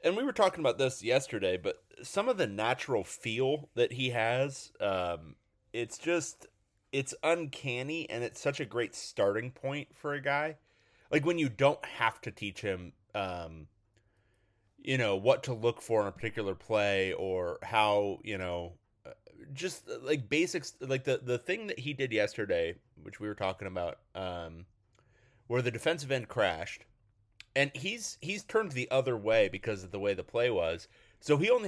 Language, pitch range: English, 105-145 Hz